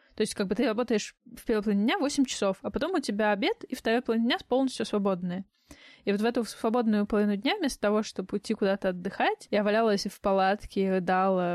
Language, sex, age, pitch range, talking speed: Russian, female, 20-39, 195-245 Hz, 215 wpm